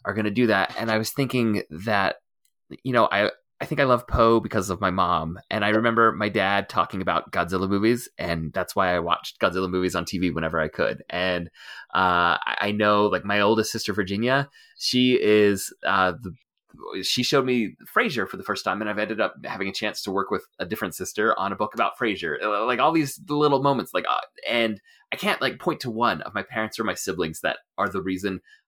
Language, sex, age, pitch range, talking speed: English, male, 20-39, 90-120 Hz, 220 wpm